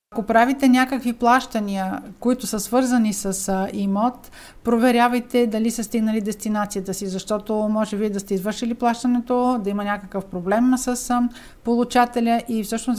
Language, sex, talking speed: Bulgarian, female, 140 wpm